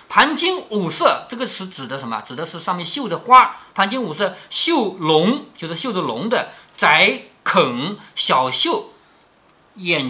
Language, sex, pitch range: Chinese, male, 170-255 Hz